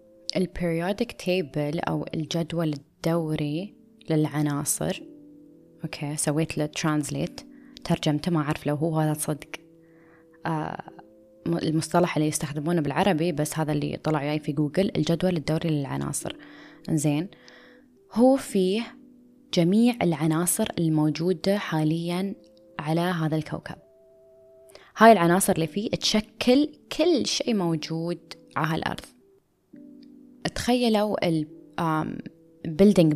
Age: 20-39